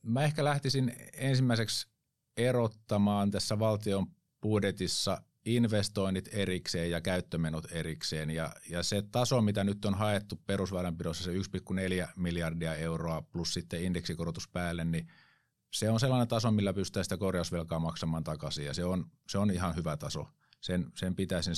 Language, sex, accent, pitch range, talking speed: Finnish, male, native, 90-110 Hz, 140 wpm